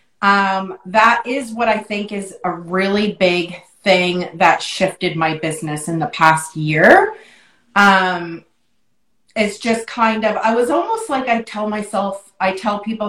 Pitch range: 175-220 Hz